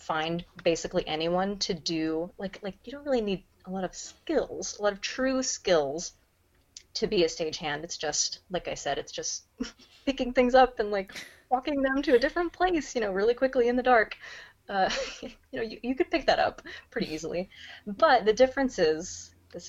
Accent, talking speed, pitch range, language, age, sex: American, 200 wpm, 155-235 Hz, English, 20-39, female